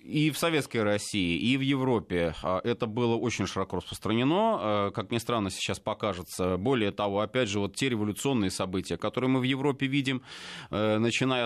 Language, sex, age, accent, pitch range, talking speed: Russian, male, 30-49, native, 105-140 Hz, 160 wpm